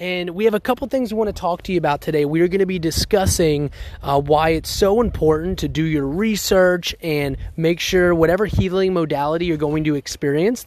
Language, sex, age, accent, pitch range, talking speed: English, male, 20-39, American, 140-175 Hz, 220 wpm